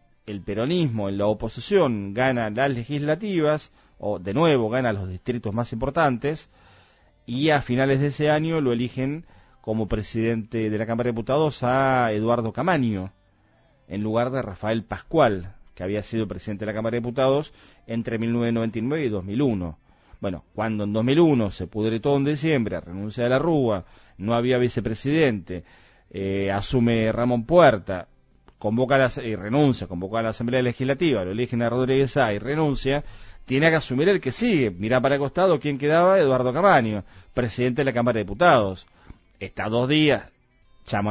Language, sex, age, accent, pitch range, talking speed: Spanish, male, 40-59, Argentinian, 105-135 Hz, 160 wpm